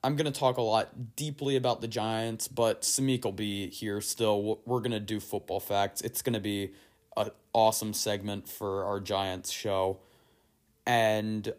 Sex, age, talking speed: male, 20-39, 175 wpm